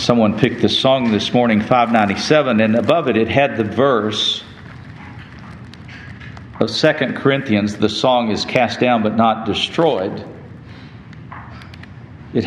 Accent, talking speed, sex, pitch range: American, 125 wpm, male, 105-130 Hz